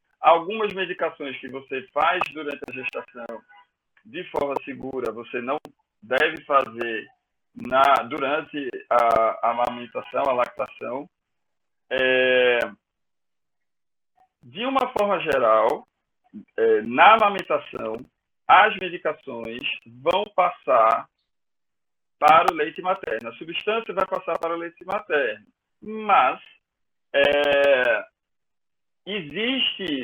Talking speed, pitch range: 90 wpm, 150-210 Hz